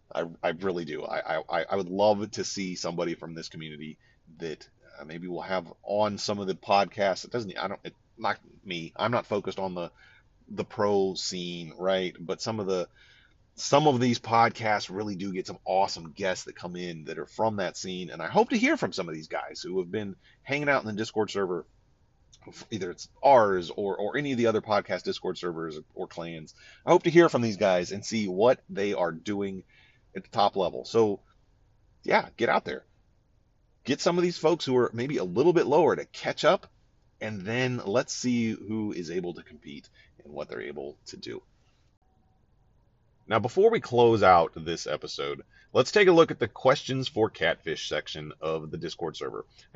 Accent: American